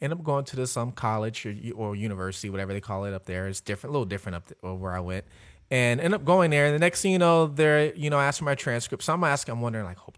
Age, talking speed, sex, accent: 30-49, 300 wpm, male, American